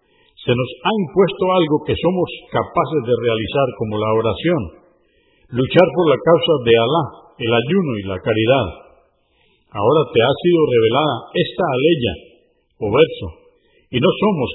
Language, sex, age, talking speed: Spanish, male, 50-69, 150 wpm